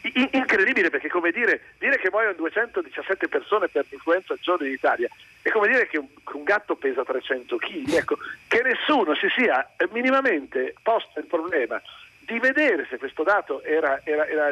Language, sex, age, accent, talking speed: Italian, male, 50-69, native, 175 wpm